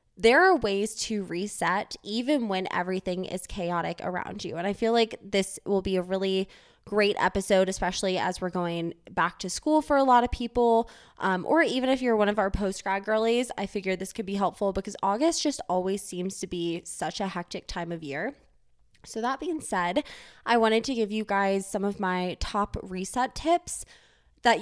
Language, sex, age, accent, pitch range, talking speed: English, female, 20-39, American, 185-225 Hz, 195 wpm